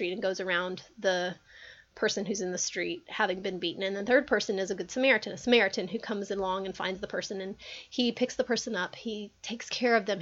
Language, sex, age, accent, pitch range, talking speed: English, female, 30-49, American, 210-310 Hz, 235 wpm